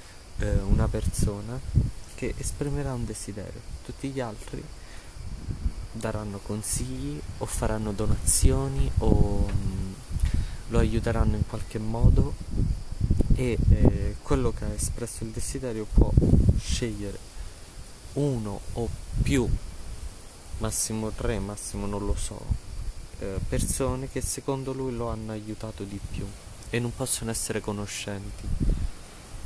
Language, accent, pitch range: Italian, native, 95-115 Hz